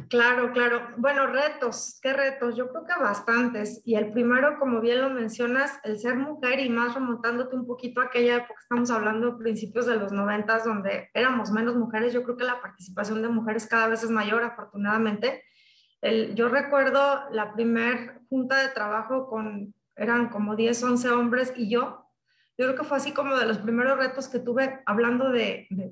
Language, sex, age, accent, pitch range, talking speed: Spanish, female, 30-49, Mexican, 225-255 Hz, 190 wpm